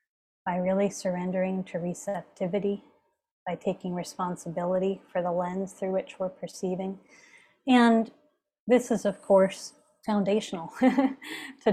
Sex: female